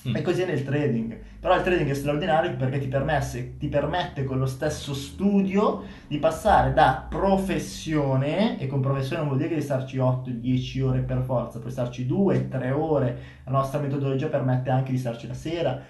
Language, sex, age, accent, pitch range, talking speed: Italian, male, 20-39, native, 125-150 Hz, 180 wpm